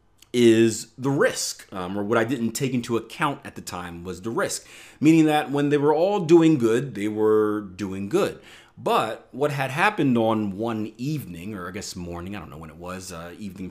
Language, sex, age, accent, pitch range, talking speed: English, male, 30-49, American, 90-115 Hz, 210 wpm